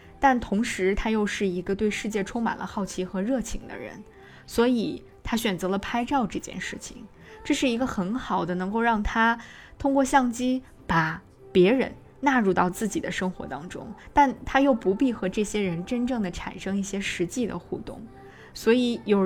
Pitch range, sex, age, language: 185-245 Hz, female, 20-39, Chinese